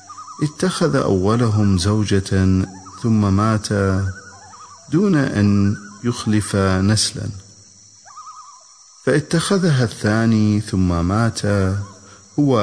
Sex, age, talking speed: male, 50-69, 65 wpm